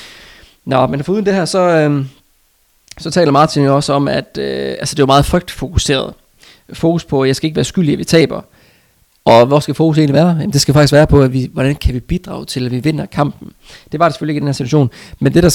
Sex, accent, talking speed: male, native, 265 wpm